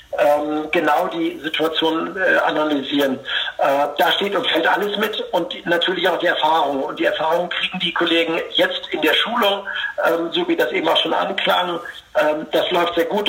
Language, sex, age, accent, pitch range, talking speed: German, male, 60-79, German, 150-185 Hz, 180 wpm